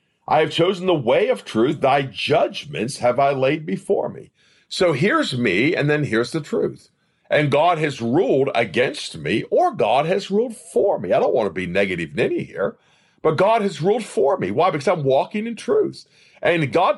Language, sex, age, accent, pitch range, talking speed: English, male, 50-69, American, 145-200 Hz, 200 wpm